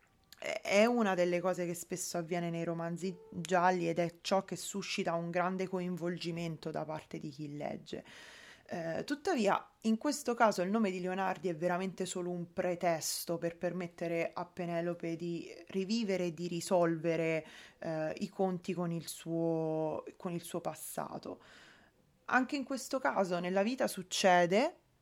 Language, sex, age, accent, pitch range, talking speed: Italian, female, 20-39, native, 175-205 Hz, 150 wpm